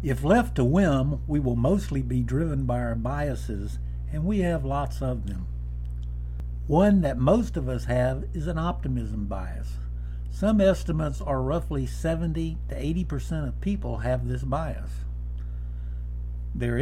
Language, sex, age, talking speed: English, male, 60-79, 150 wpm